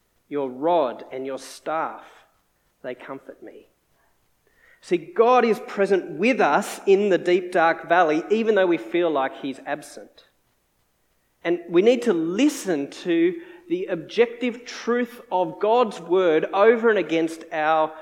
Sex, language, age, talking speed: male, English, 40-59, 140 wpm